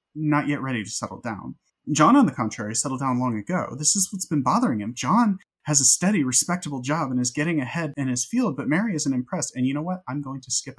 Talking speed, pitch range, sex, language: 250 wpm, 125-180 Hz, male, English